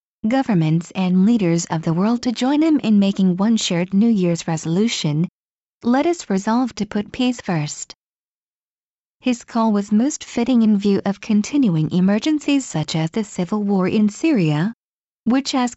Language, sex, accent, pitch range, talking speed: English, female, American, 180-240 Hz, 160 wpm